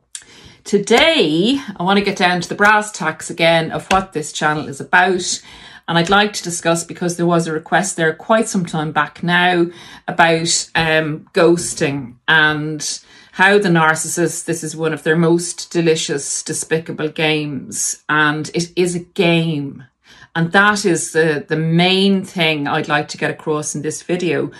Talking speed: 170 wpm